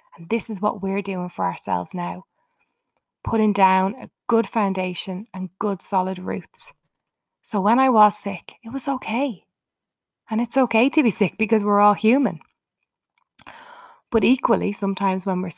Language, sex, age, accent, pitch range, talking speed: English, female, 20-39, Irish, 200-270 Hz, 160 wpm